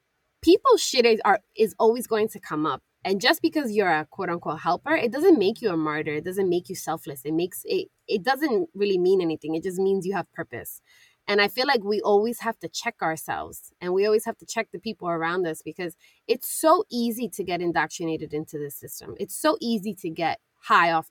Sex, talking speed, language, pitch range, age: female, 225 wpm, English, 180-280 Hz, 20-39